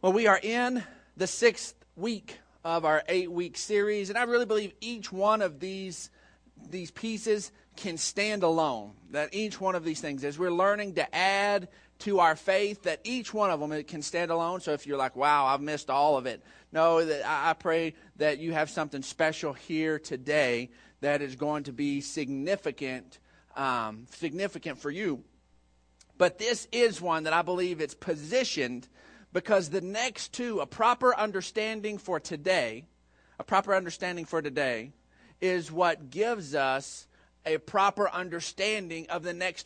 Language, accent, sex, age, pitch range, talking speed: English, American, male, 40-59, 150-205 Hz, 165 wpm